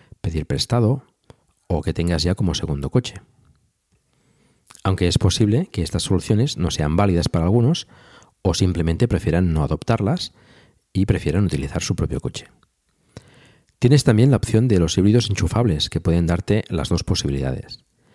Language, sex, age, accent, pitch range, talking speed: Spanish, male, 50-69, Spanish, 85-115 Hz, 150 wpm